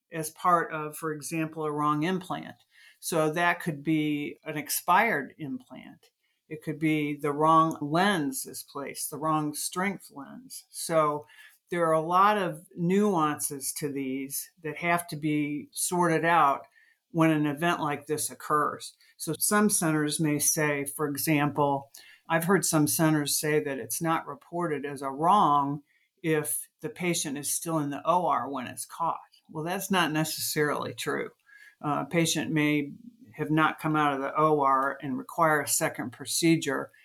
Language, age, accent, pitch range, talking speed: English, 50-69, American, 145-170 Hz, 160 wpm